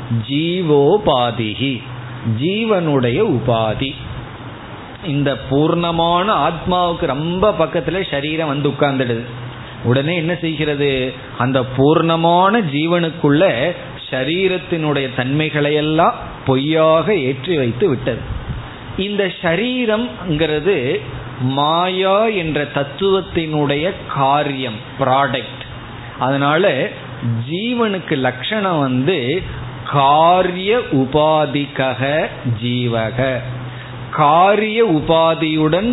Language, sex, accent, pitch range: Tamil, male, native, 125-170 Hz